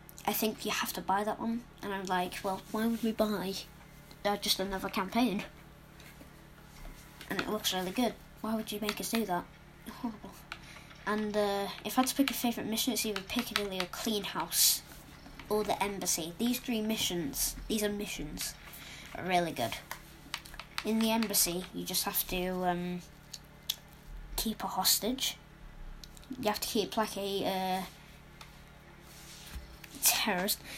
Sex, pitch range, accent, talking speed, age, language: female, 180-220 Hz, British, 155 wpm, 20-39, English